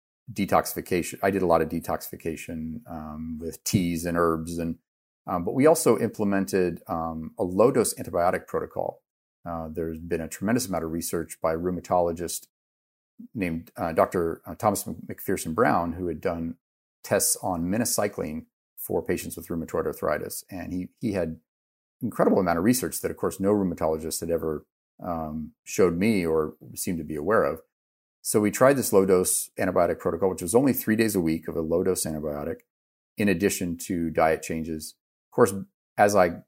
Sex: male